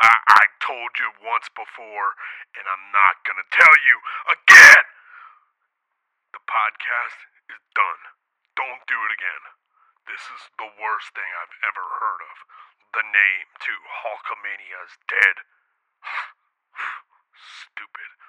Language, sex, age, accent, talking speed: English, male, 40-59, American, 120 wpm